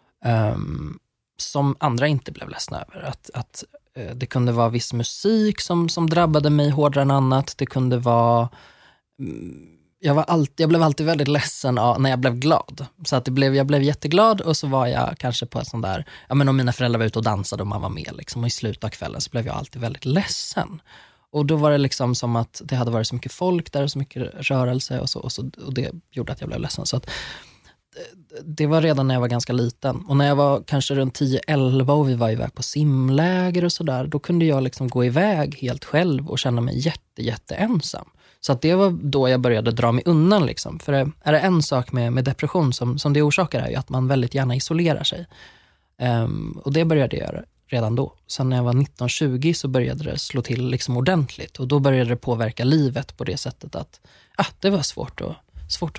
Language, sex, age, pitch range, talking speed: Swedish, male, 20-39, 125-150 Hz, 230 wpm